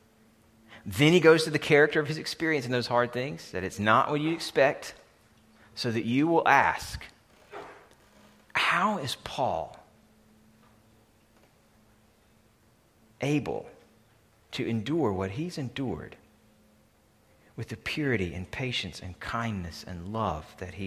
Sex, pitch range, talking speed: male, 100-110 Hz, 125 wpm